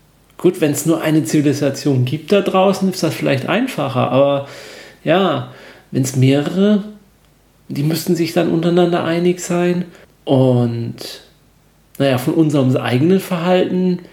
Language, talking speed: German, 130 wpm